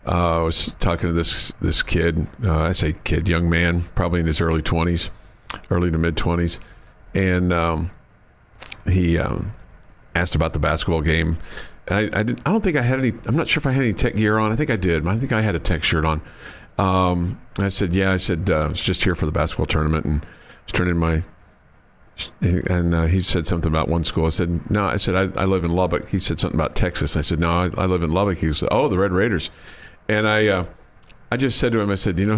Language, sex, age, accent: English, male, 50-69, American